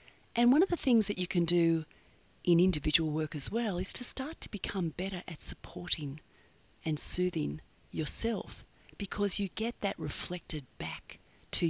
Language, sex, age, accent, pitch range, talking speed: English, female, 40-59, Australian, 165-235 Hz, 165 wpm